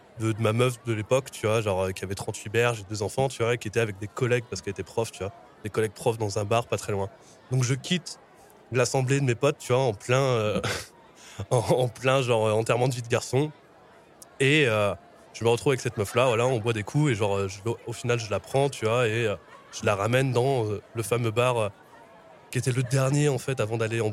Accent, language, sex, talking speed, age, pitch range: French, French, male, 240 wpm, 20-39, 105-125 Hz